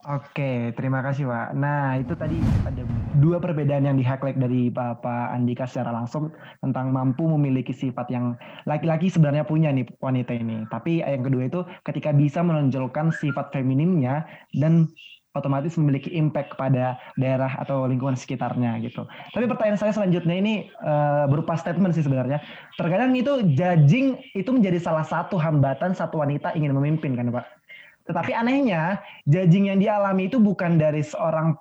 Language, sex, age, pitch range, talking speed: Indonesian, male, 20-39, 140-185 Hz, 155 wpm